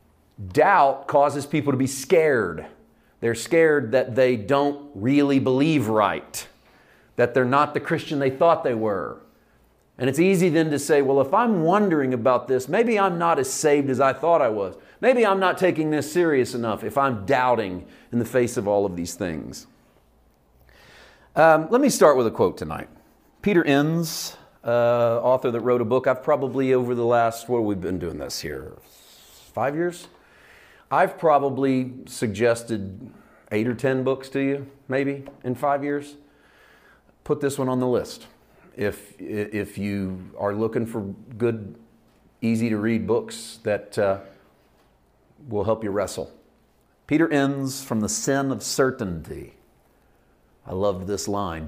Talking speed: 160 wpm